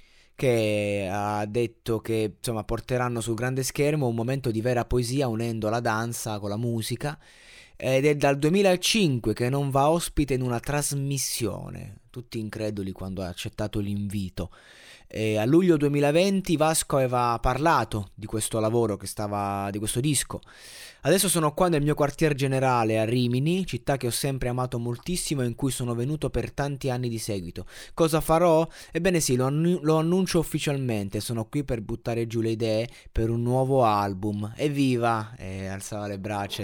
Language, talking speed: Italian, 165 wpm